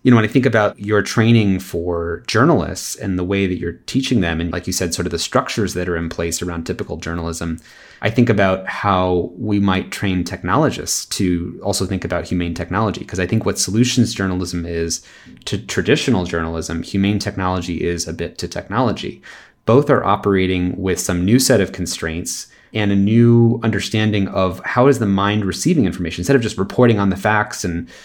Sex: male